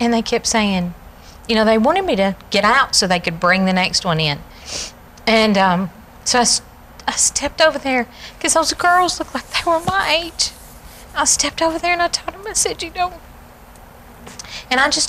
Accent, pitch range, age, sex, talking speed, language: American, 205-285 Hz, 40-59, female, 205 wpm, English